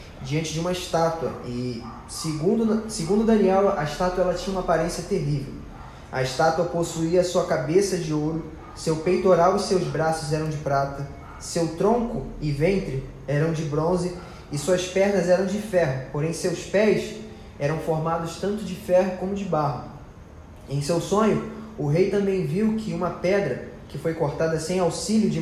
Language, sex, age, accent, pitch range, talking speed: Portuguese, male, 20-39, Brazilian, 155-190 Hz, 165 wpm